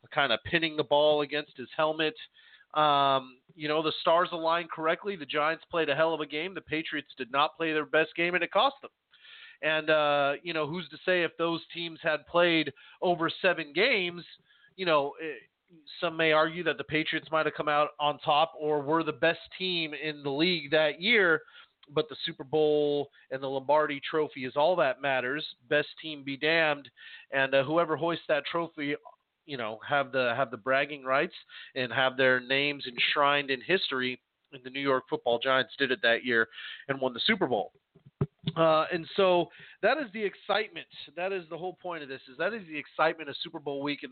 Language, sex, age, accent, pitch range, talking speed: English, male, 30-49, American, 135-165 Hz, 205 wpm